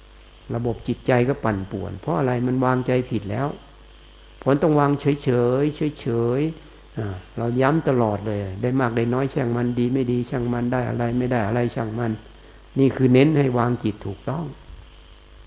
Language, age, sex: Thai, 60-79, male